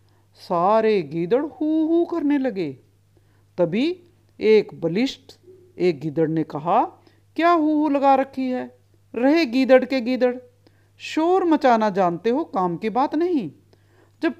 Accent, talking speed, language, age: native, 135 wpm, Hindi, 50-69